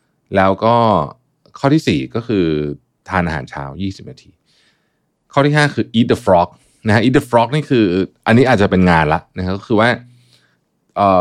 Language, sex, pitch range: Thai, male, 85-115 Hz